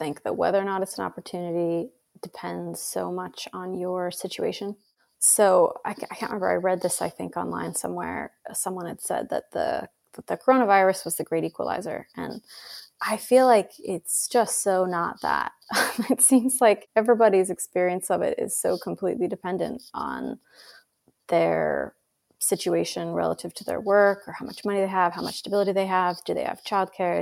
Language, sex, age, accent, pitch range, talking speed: English, female, 20-39, American, 175-215 Hz, 175 wpm